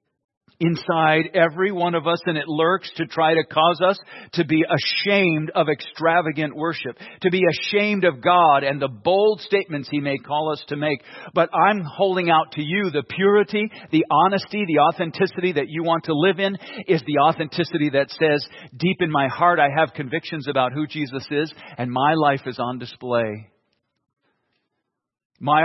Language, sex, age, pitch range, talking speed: English, male, 50-69, 130-165 Hz, 175 wpm